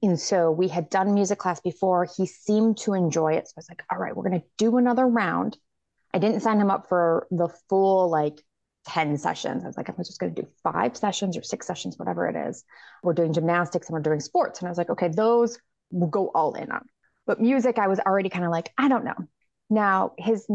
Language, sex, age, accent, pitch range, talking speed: English, female, 30-49, American, 170-205 Hz, 240 wpm